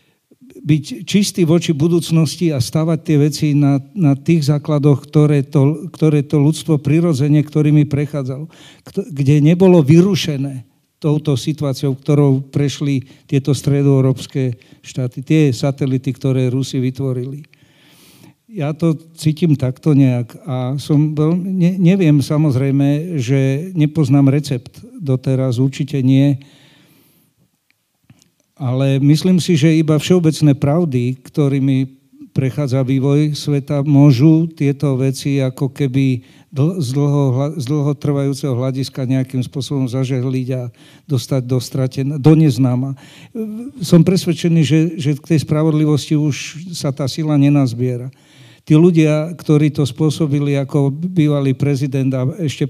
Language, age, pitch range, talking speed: Slovak, 50-69, 135-155 Hz, 115 wpm